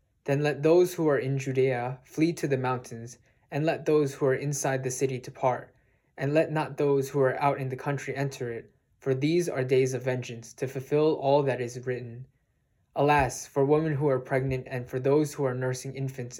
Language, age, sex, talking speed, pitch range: English, 20-39, male, 210 wpm, 125-140 Hz